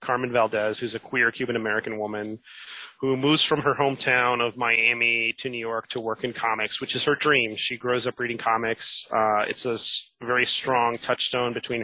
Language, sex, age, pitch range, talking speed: English, male, 30-49, 115-130 Hz, 190 wpm